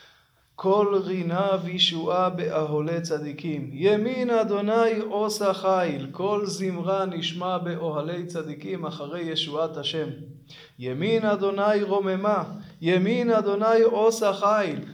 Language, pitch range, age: Hebrew, 165-215 Hz, 20-39